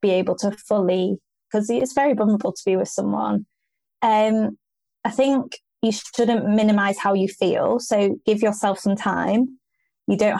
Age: 20-39